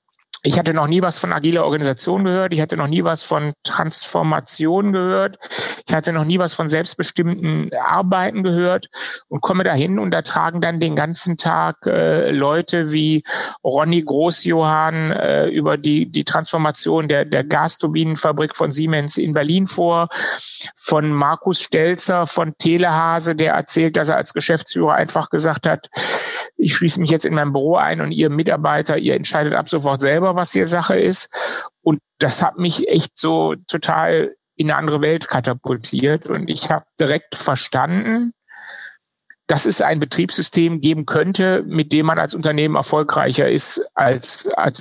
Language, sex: German, male